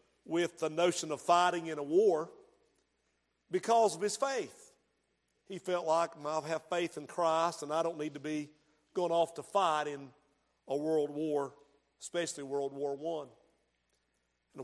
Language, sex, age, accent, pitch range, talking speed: English, male, 50-69, American, 150-185 Hz, 165 wpm